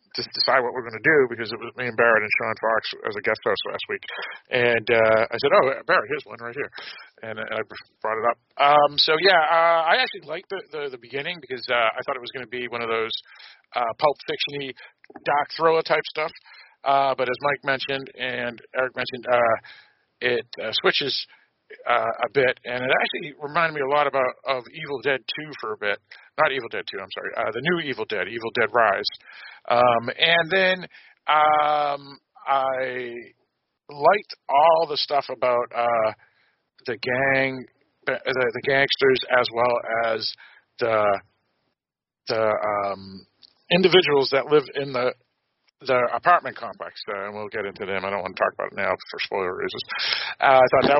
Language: English